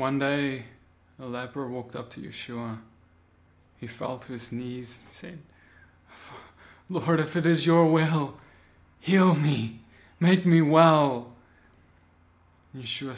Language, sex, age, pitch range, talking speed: English, male, 20-39, 105-165 Hz, 125 wpm